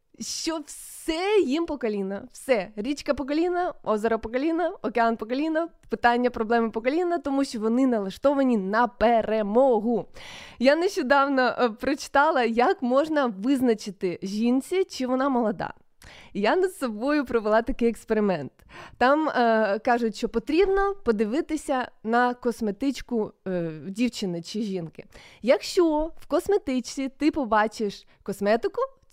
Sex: female